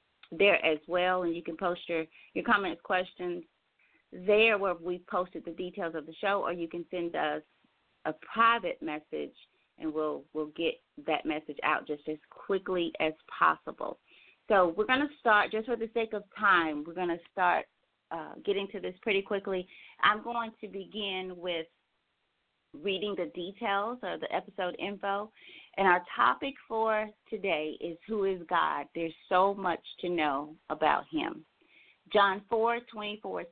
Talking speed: 165 wpm